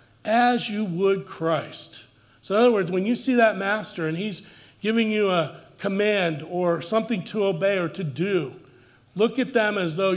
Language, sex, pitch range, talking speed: English, male, 160-210 Hz, 185 wpm